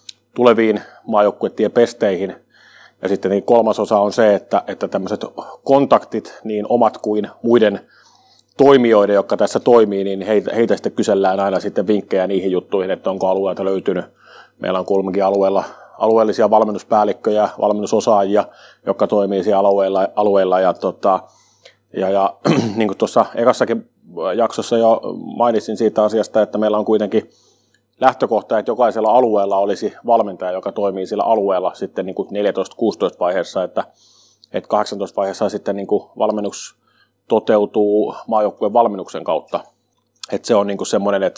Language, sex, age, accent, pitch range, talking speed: Finnish, male, 30-49, native, 95-110 Hz, 140 wpm